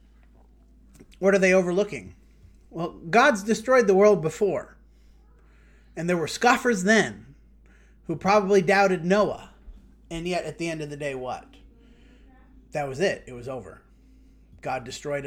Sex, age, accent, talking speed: male, 30-49, American, 140 wpm